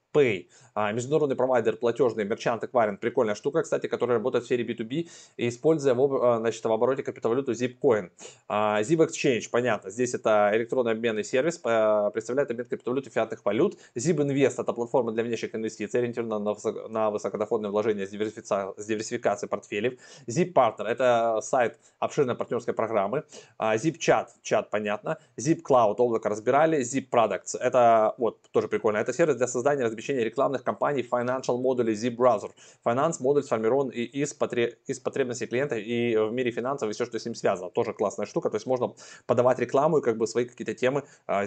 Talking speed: 165 wpm